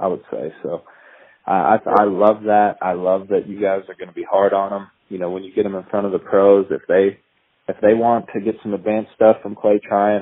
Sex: male